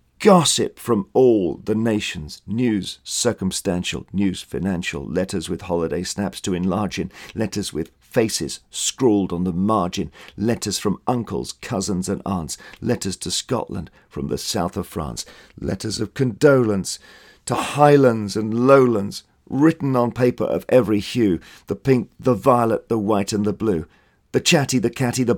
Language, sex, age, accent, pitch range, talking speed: English, male, 50-69, British, 90-120 Hz, 150 wpm